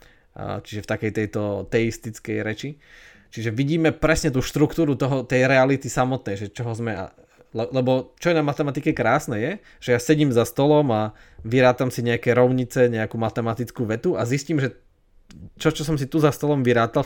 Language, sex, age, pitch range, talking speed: Slovak, male, 20-39, 110-130 Hz, 170 wpm